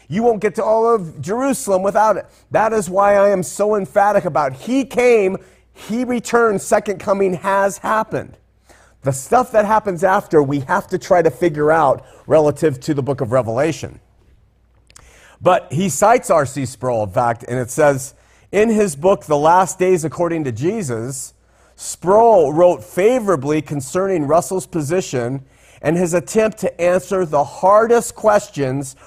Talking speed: 155 wpm